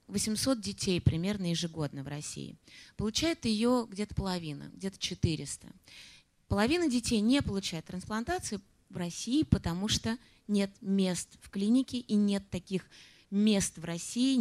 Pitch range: 170-225 Hz